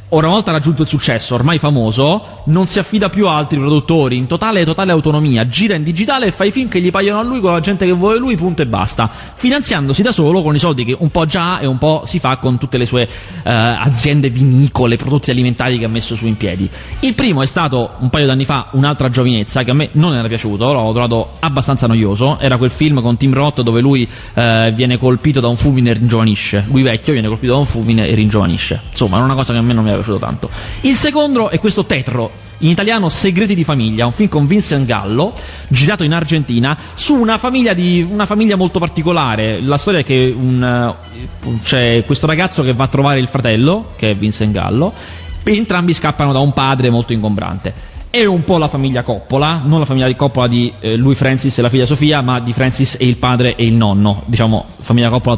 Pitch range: 115-160 Hz